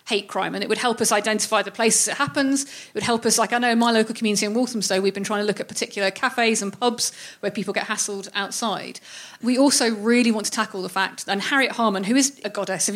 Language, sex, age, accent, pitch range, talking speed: English, female, 30-49, British, 200-240 Hz, 260 wpm